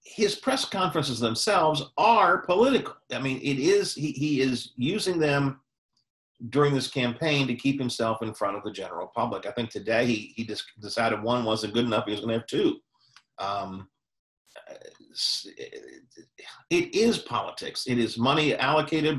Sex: male